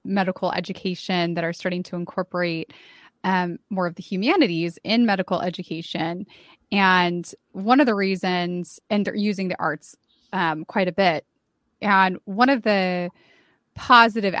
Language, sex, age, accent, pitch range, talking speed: English, female, 20-39, American, 175-210 Hz, 140 wpm